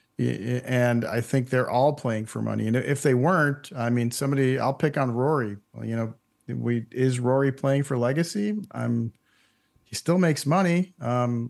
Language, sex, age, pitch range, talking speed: English, male, 40-59, 120-145 Hz, 175 wpm